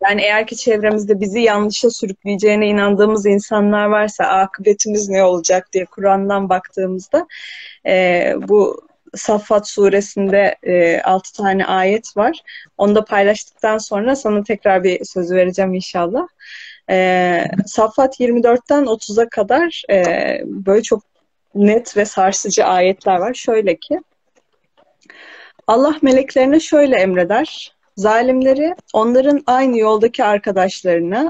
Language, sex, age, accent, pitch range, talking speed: Turkish, female, 30-49, native, 195-255 Hz, 115 wpm